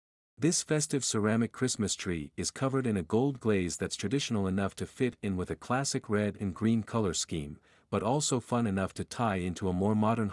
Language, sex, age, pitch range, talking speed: English, male, 50-69, 90-125 Hz, 205 wpm